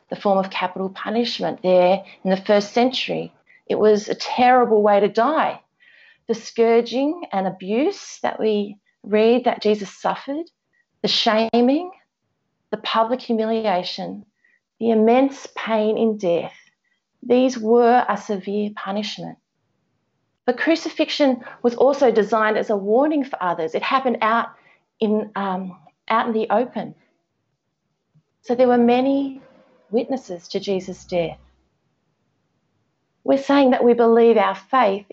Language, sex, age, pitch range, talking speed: English, female, 30-49, 205-255 Hz, 130 wpm